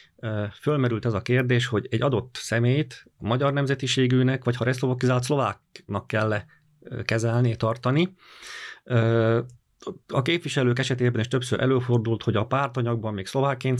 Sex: male